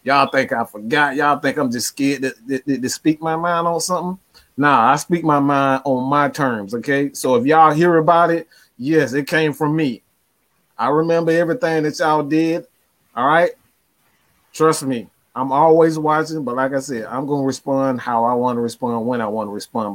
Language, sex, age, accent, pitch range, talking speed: English, male, 30-49, American, 135-165 Hz, 205 wpm